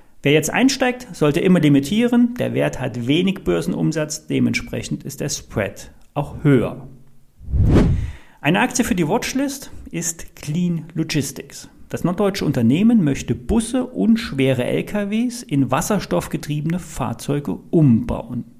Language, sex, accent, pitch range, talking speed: German, male, German, 125-195 Hz, 120 wpm